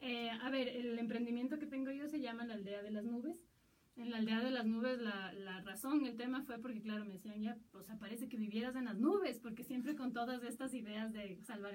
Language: Spanish